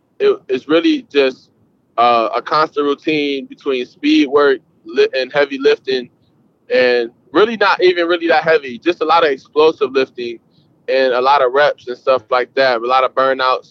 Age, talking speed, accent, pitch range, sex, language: 20-39, 170 wpm, American, 125-170 Hz, male, English